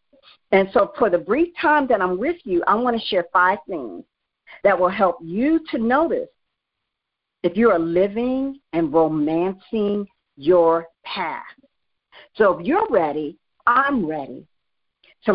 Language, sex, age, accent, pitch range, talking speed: English, female, 50-69, American, 175-285 Hz, 145 wpm